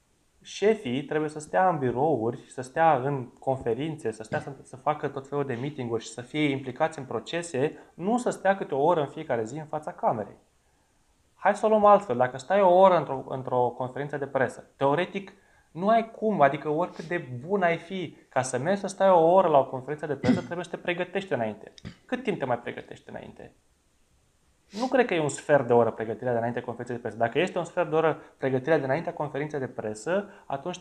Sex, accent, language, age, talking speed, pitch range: male, native, Romanian, 20-39, 215 wpm, 130-175 Hz